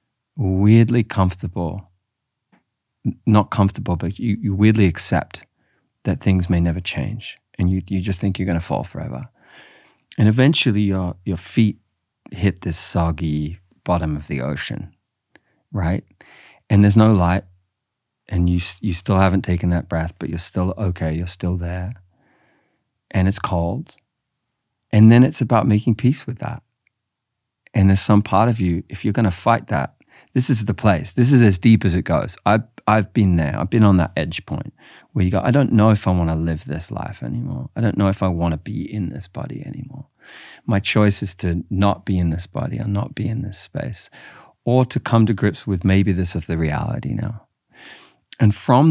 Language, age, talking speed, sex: English, 30-49, 190 wpm, male